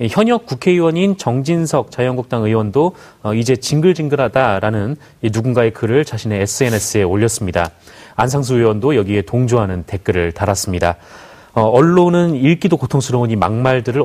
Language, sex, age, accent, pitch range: Korean, male, 30-49, native, 110-150 Hz